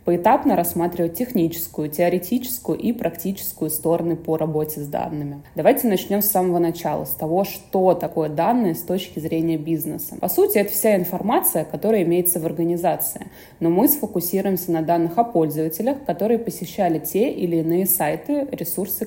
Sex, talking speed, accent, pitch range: female, 150 wpm, native, 165-205 Hz